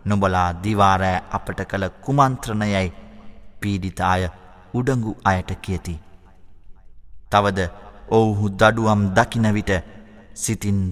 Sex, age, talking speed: male, 30-49, 75 wpm